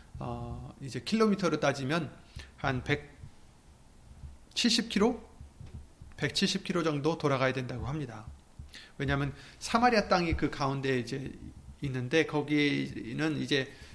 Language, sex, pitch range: Korean, male, 120-165 Hz